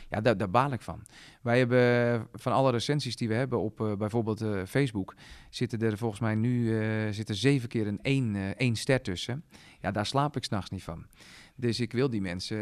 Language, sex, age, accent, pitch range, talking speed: Dutch, male, 40-59, Dutch, 105-130 Hz, 200 wpm